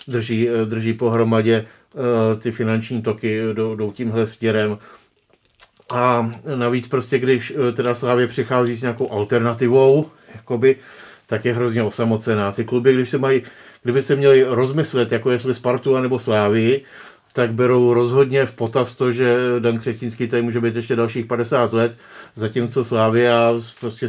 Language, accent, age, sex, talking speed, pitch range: Czech, native, 40-59, male, 140 wpm, 115-125 Hz